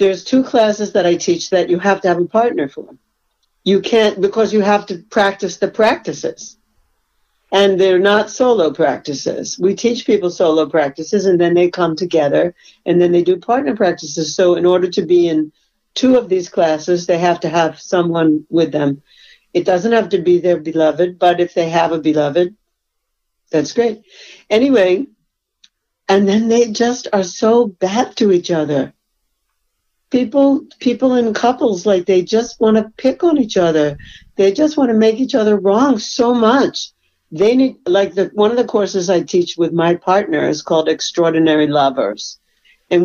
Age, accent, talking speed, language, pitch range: 60-79, American, 180 wpm, English, 170-215 Hz